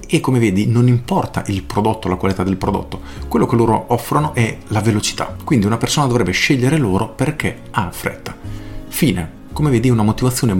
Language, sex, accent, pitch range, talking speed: Italian, male, native, 100-125 Hz, 180 wpm